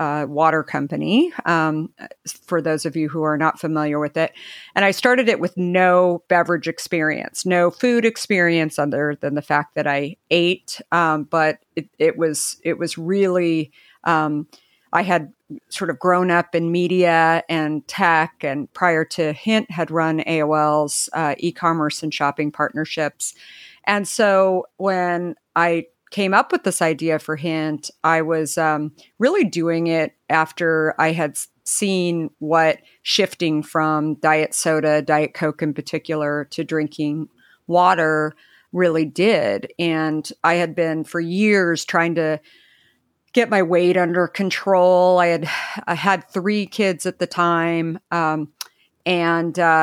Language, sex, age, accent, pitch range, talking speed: English, female, 50-69, American, 155-180 Hz, 145 wpm